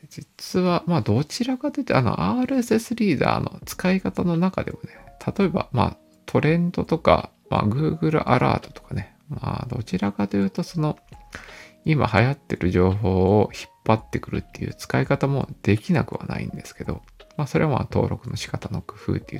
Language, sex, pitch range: Japanese, male, 100-160 Hz